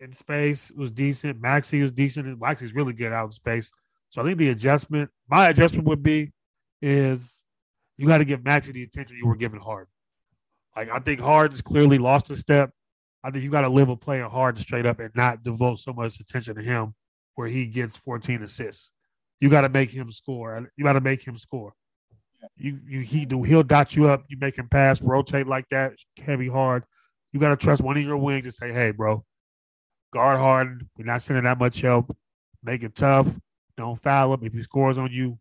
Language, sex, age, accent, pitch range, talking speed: English, male, 20-39, American, 115-140 Hz, 210 wpm